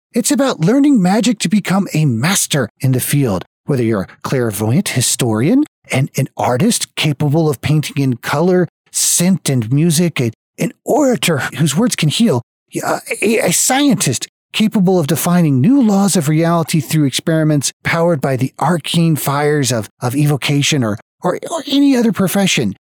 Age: 40-59